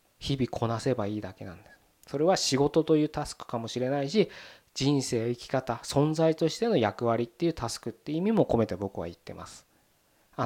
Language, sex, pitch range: Japanese, male, 110-165 Hz